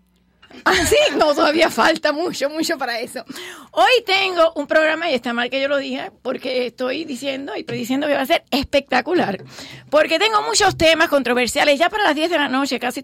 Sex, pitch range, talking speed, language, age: female, 245-315 Hz, 200 wpm, English, 40-59